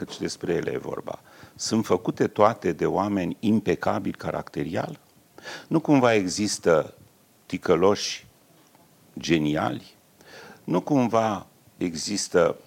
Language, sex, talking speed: English, male, 100 wpm